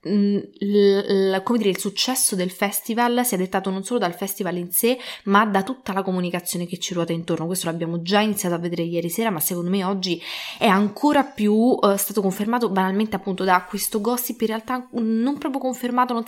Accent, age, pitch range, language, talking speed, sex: Italian, 20-39, 180-220 Hz, English, 205 wpm, female